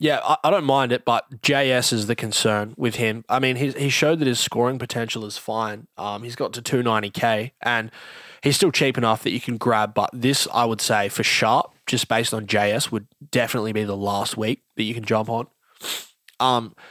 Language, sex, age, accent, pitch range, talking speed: English, male, 20-39, Australian, 110-135 Hz, 210 wpm